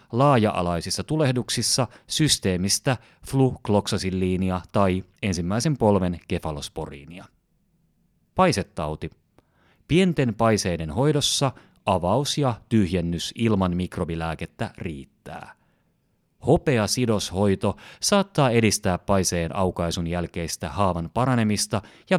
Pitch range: 90-125 Hz